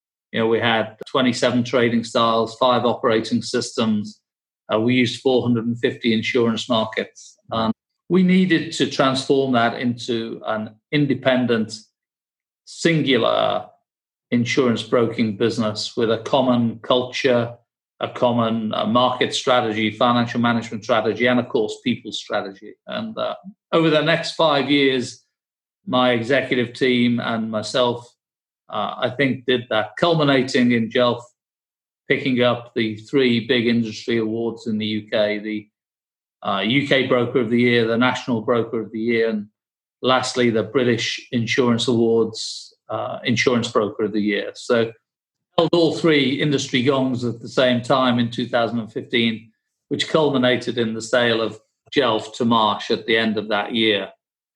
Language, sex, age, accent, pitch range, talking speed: English, male, 40-59, British, 115-130 Hz, 140 wpm